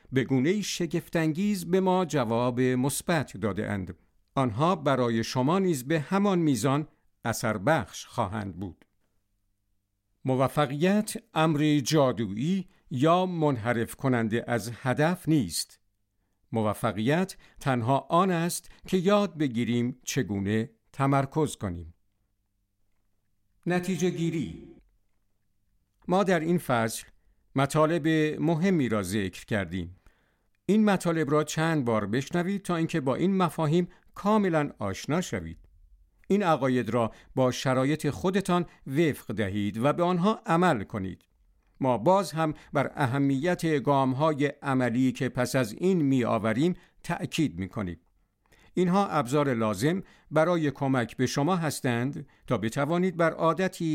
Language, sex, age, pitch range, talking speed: Persian, male, 50-69, 110-170 Hz, 110 wpm